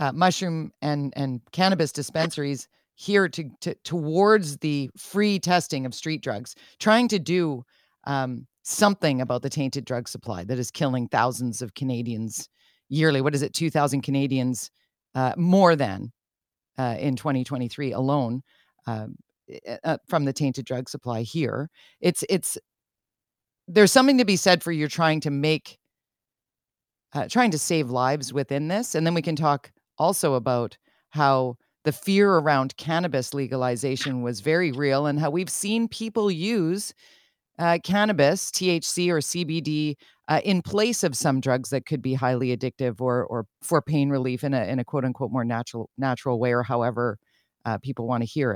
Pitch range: 130-180 Hz